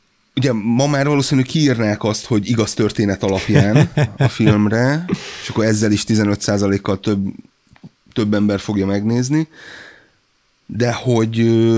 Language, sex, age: Hungarian, male, 30-49